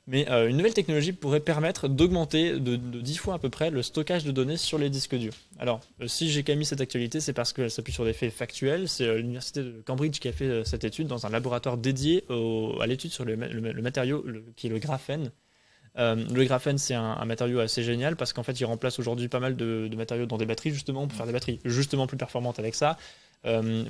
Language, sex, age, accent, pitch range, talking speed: French, male, 20-39, French, 120-145 Hz, 255 wpm